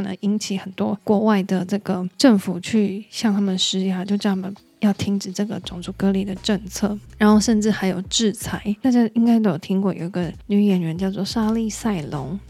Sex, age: female, 20-39